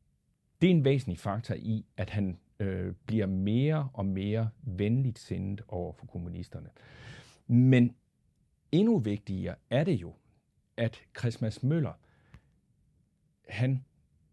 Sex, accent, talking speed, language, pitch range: male, native, 115 wpm, Danish, 100-130 Hz